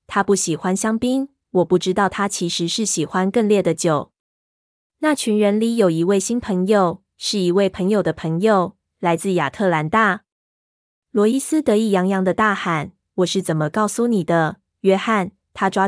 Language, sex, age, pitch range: Chinese, female, 20-39, 175-215 Hz